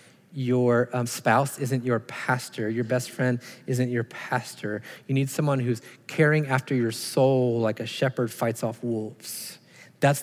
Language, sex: English, male